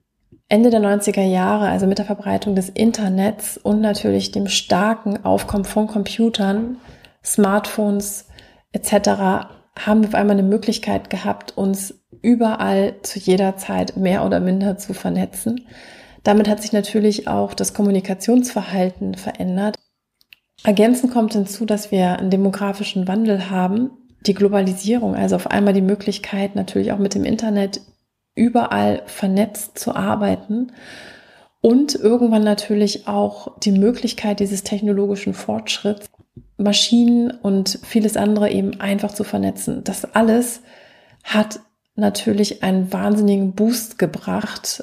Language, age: German, 30-49